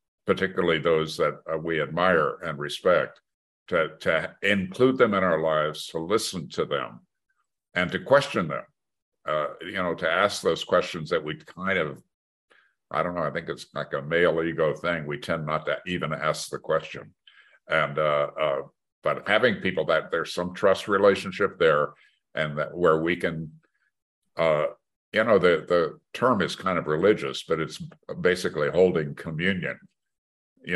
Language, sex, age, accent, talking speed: English, male, 60-79, American, 170 wpm